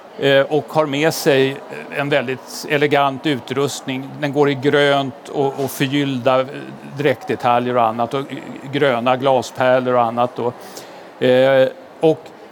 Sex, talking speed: male, 110 wpm